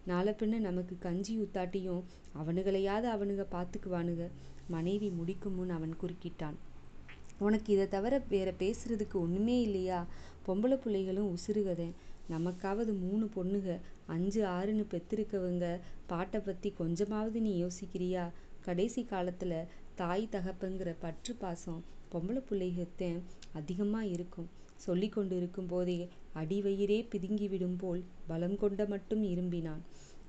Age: 30-49